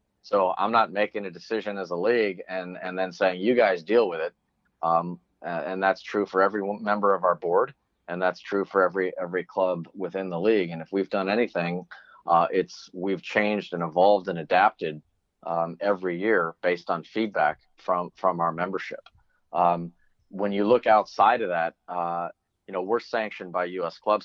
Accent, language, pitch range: American, English, 90-105 Hz